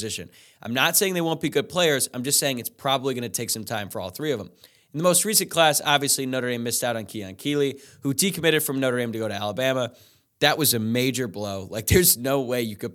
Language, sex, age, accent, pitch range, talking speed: English, male, 20-39, American, 110-140 Hz, 260 wpm